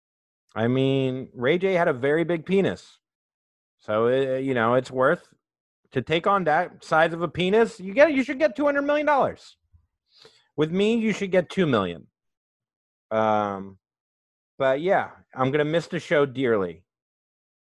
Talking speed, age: 160 wpm, 30-49